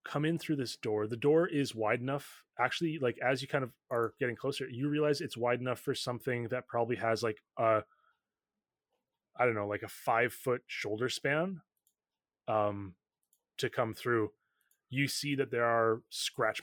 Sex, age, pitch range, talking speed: male, 20-39, 115-140 Hz, 180 wpm